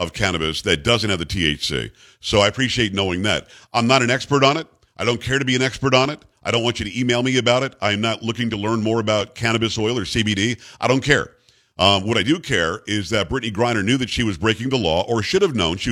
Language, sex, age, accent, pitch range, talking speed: English, male, 50-69, American, 105-130 Hz, 270 wpm